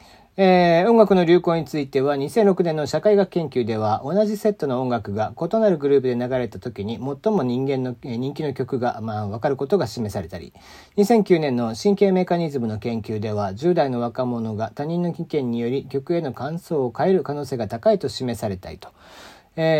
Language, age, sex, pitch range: Japanese, 40-59, male, 120-190 Hz